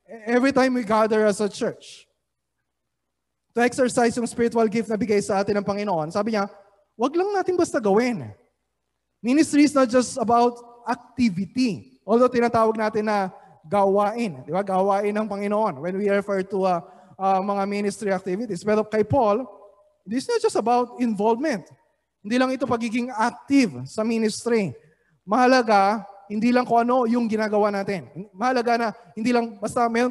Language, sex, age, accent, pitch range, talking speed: Filipino, male, 20-39, native, 200-240 Hz, 160 wpm